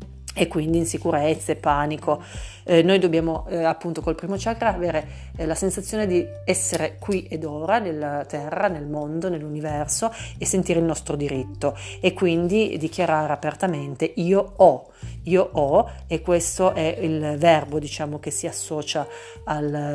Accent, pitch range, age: native, 145-170 Hz, 40-59